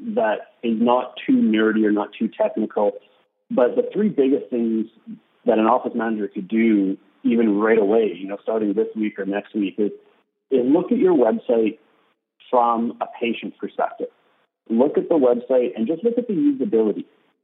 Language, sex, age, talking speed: English, male, 50-69, 175 wpm